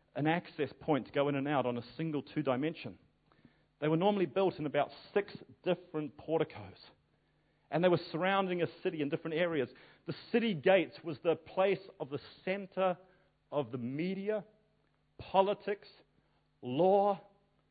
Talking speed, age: 150 wpm, 40-59